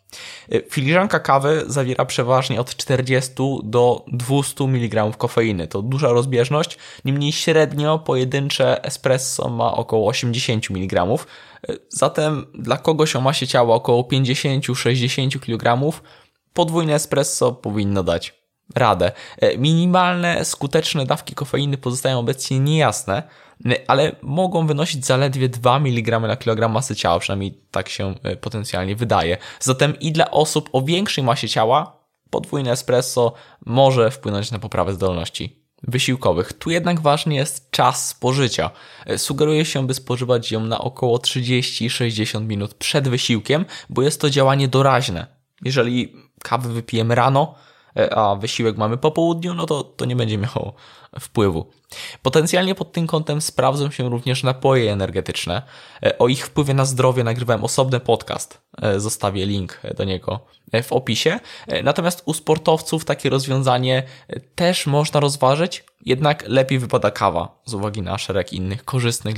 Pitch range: 115-145 Hz